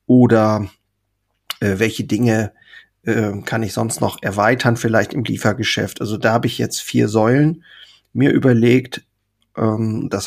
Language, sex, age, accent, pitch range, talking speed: German, male, 40-59, German, 105-125 Hz, 140 wpm